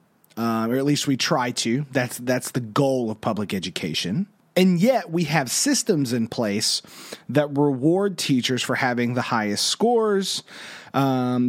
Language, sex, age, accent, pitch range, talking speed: English, male, 30-49, American, 125-175 Hz, 155 wpm